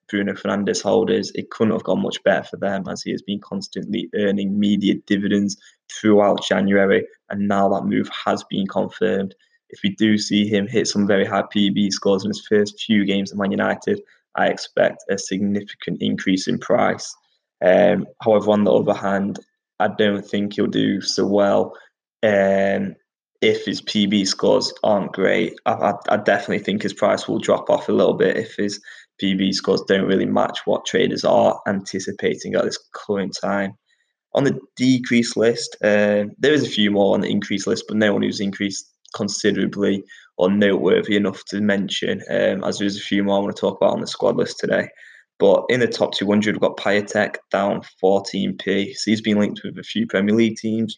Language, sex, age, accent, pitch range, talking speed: English, male, 10-29, British, 100-105 Hz, 190 wpm